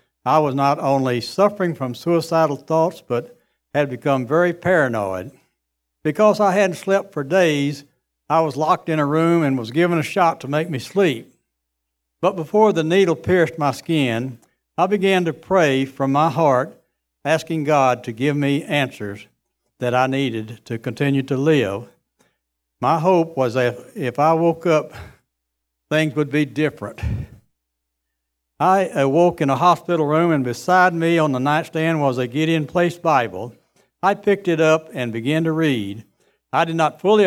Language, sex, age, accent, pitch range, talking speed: English, male, 60-79, American, 125-170 Hz, 165 wpm